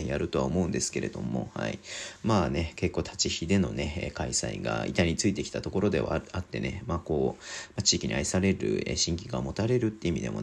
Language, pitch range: Japanese, 85-110 Hz